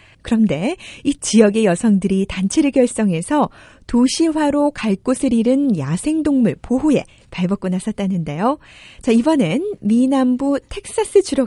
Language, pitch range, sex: Korean, 180-265 Hz, female